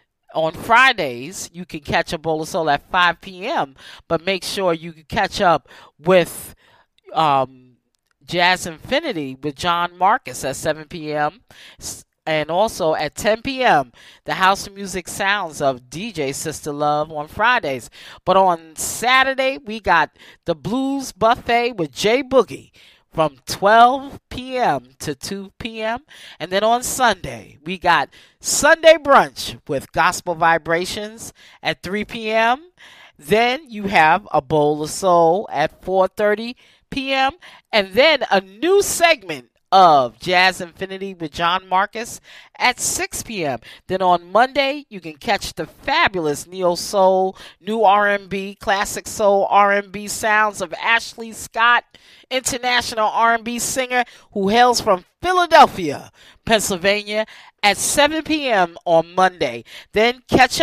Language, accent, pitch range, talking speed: English, American, 165-235 Hz, 130 wpm